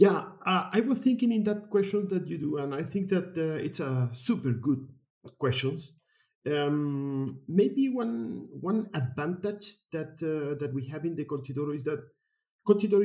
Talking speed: 170 wpm